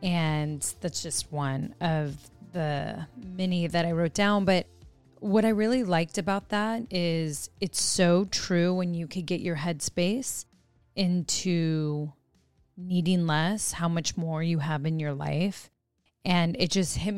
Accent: American